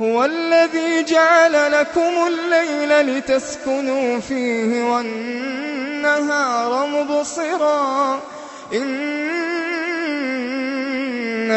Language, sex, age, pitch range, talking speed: Arabic, male, 20-39, 245-335 Hz, 50 wpm